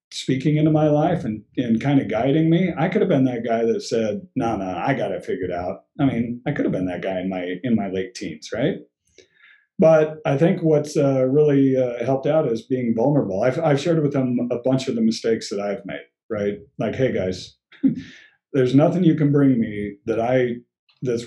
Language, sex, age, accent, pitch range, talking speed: English, male, 50-69, American, 115-145 Hz, 225 wpm